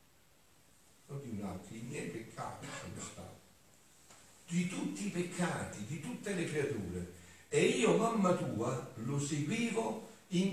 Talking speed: 130 wpm